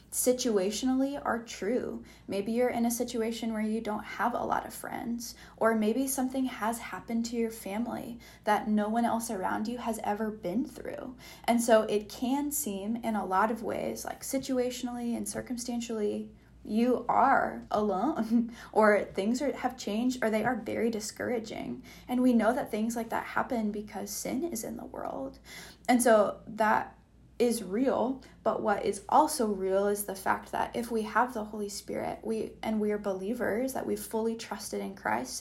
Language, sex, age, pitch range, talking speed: English, female, 10-29, 205-235 Hz, 180 wpm